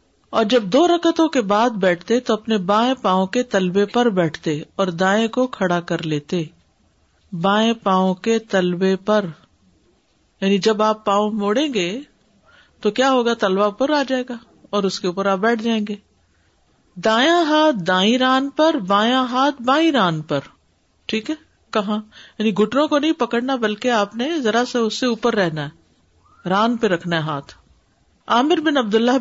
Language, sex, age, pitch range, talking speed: Urdu, female, 50-69, 180-235 Hz, 175 wpm